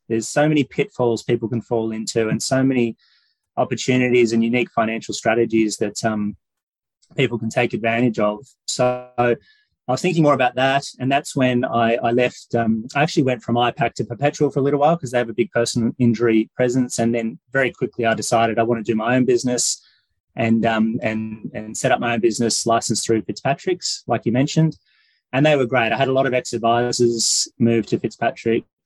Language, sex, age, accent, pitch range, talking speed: English, male, 20-39, Australian, 115-130 Hz, 200 wpm